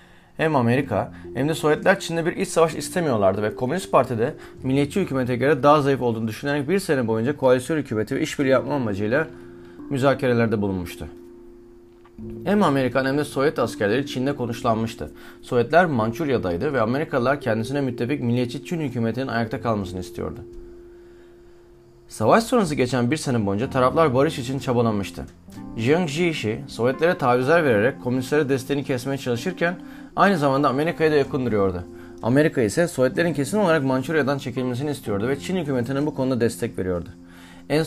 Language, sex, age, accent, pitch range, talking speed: Turkish, male, 30-49, native, 115-145 Hz, 145 wpm